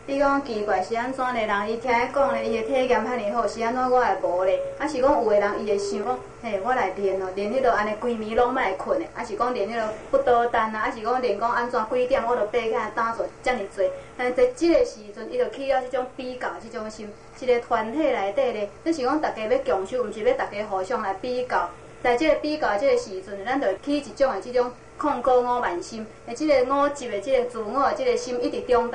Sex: female